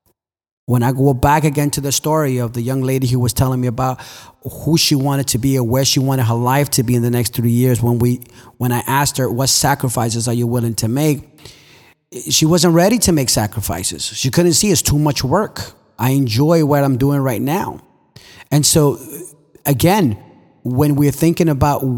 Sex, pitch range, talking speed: male, 125-150 Hz, 200 wpm